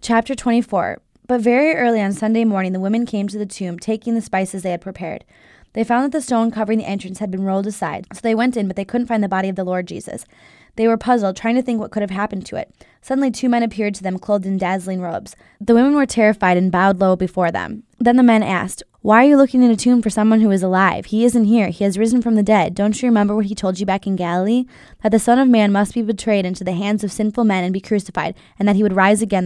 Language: English